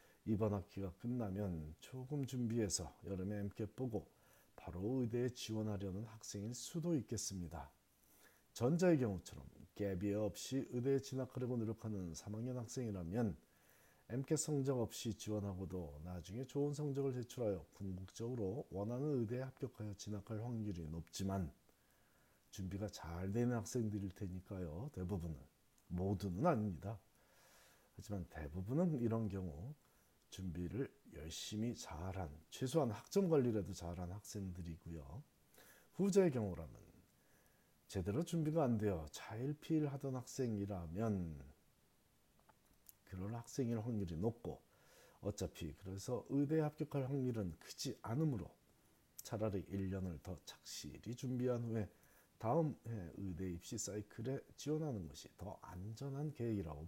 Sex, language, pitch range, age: male, Korean, 95-125 Hz, 40-59